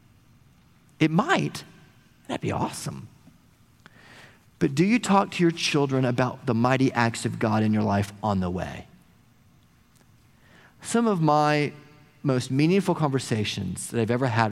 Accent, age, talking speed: American, 40-59, 140 wpm